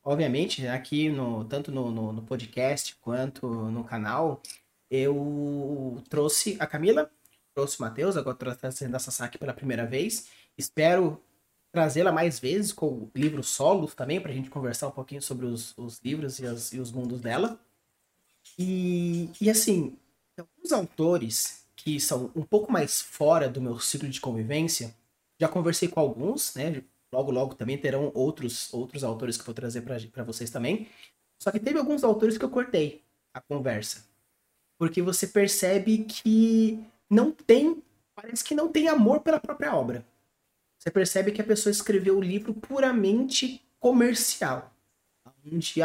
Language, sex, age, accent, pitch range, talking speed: Portuguese, male, 20-39, Brazilian, 130-190 Hz, 160 wpm